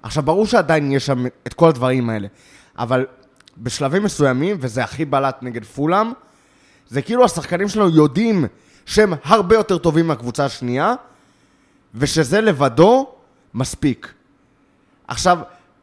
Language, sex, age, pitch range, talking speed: Hebrew, male, 20-39, 140-185 Hz, 120 wpm